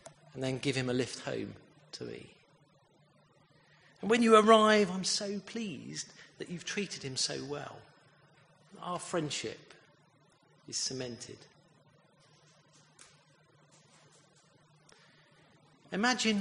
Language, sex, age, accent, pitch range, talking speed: English, male, 40-59, British, 145-190 Hz, 100 wpm